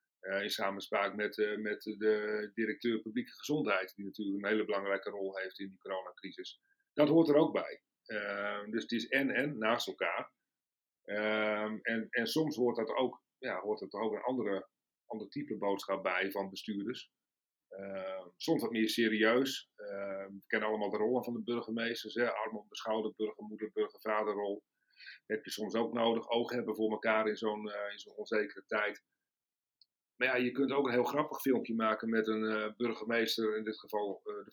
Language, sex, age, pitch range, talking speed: Dutch, male, 40-59, 105-125 Hz, 190 wpm